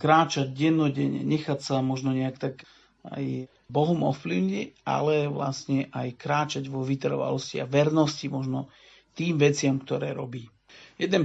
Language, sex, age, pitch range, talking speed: Slovak, male, 50-69, 135-155 Hz, 130 wpm